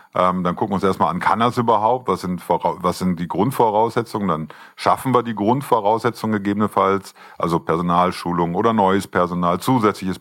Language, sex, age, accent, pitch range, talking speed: German, male, 50-69, German, 90-105 Hz, 160 wpm